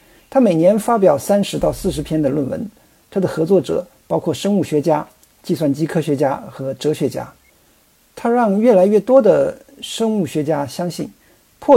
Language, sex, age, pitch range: Chinese, male, 50-69, 150-210 Hz